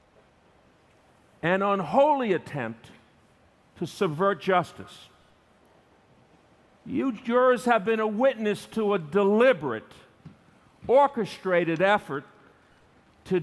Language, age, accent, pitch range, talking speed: English, 50-69, American, 155-205 Hz, 80 wpm